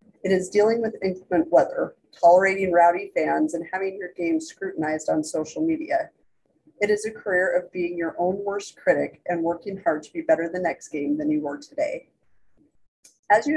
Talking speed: 185 wpm